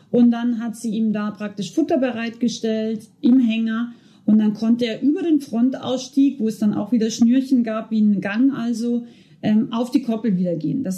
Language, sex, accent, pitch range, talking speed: German, female, German, 205-260 Hz, 190 wpm